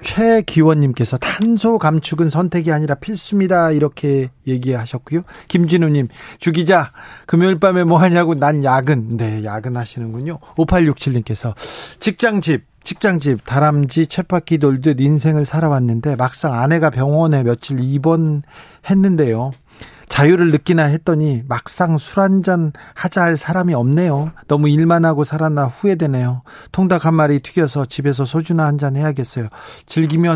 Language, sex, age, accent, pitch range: Korean, male, 40-59, native, 130-170 Hz